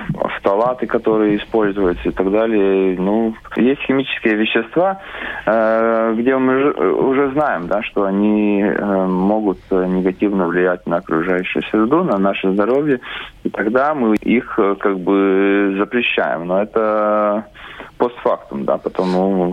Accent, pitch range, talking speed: native, 95-120 Hz, 115 wpm